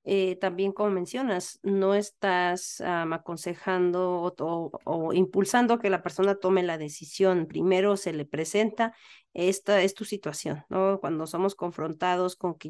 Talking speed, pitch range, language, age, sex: 150 wpm, 175-210 Hz, English, 40-59, female